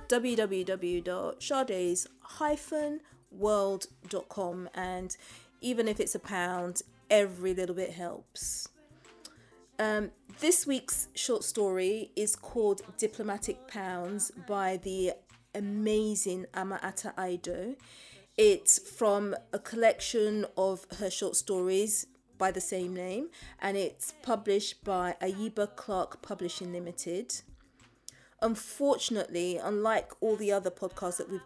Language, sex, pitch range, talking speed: English, female, 185-215 Hz, 105 wpm